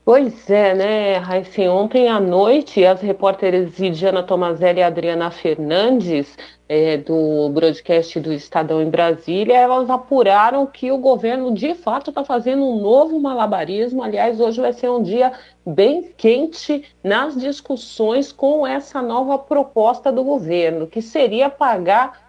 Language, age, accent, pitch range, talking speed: Portuguese, 50-69, Brazilian, 195-275 Hz, 135 wpm